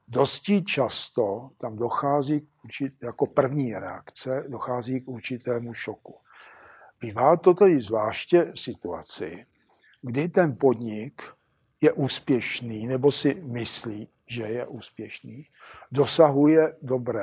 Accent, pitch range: native, 115-140 Hz